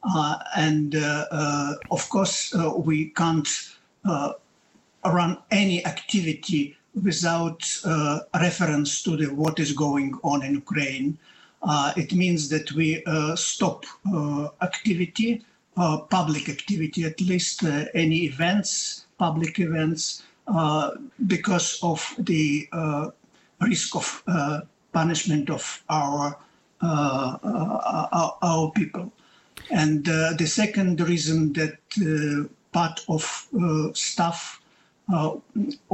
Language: Danish